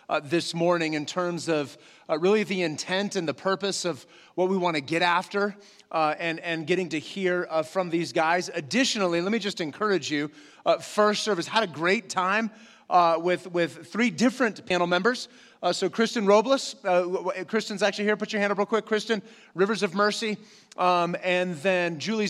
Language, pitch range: English, 170-215 Hz